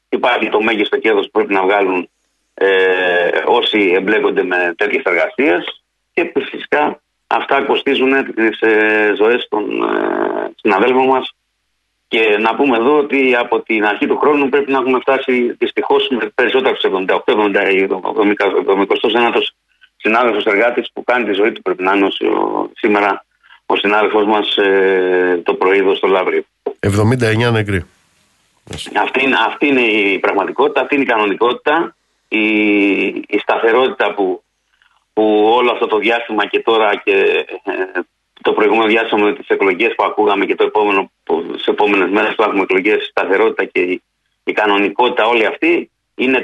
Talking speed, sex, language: 140 wpm, male, Greek